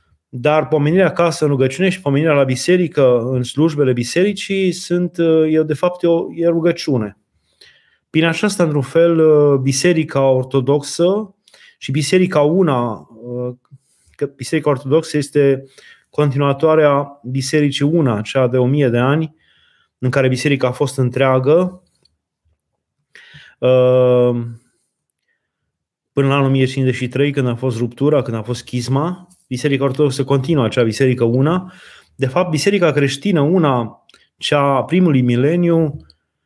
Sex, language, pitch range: male, Romanian, 130-160 Hz